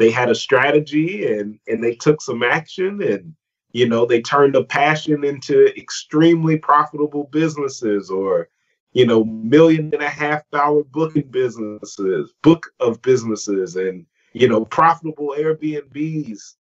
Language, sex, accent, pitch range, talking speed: English, male, American, 115-155 Hz, 140 wpm